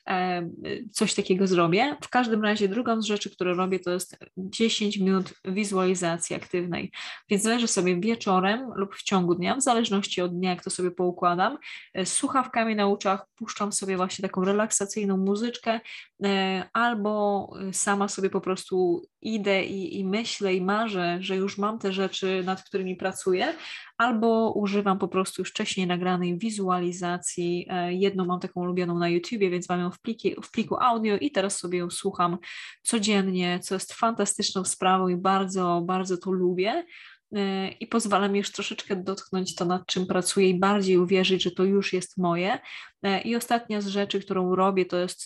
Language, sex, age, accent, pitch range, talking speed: Polish, female, 20-39, native, 185-210 Hz, 165 wpm